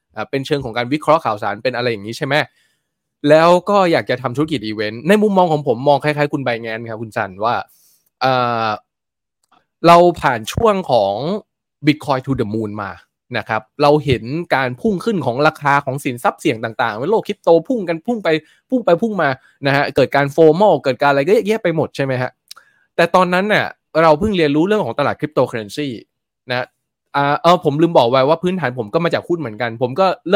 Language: Thai